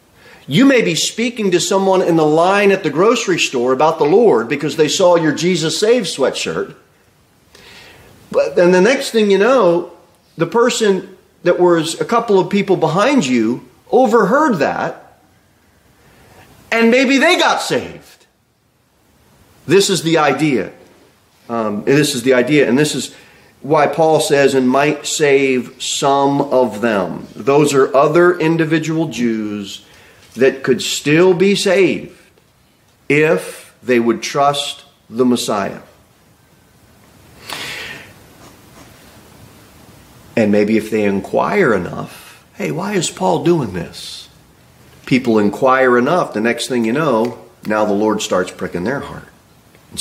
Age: 30-49